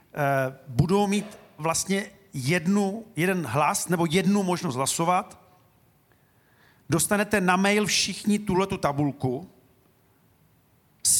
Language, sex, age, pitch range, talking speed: Czech, male, 40-59, 155-190 Hz, 85 wpm